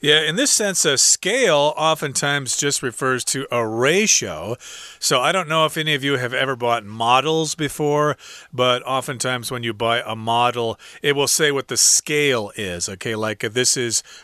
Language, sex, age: Chinese, male, 40-59